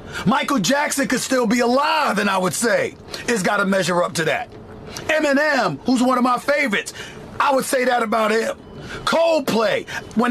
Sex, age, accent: male, 40-59, American